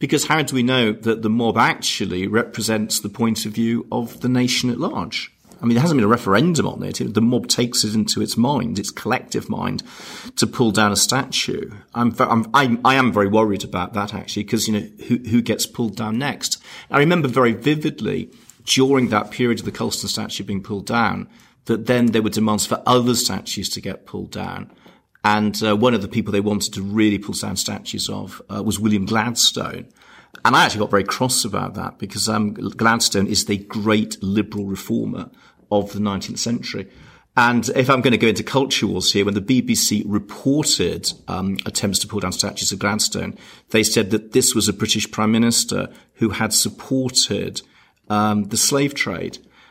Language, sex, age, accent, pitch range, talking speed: English, male, 40-59, British, 105-120 Hz, 195 wpm